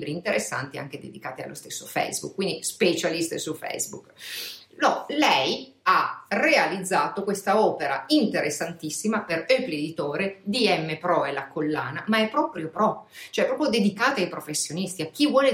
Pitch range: 160-215 Hz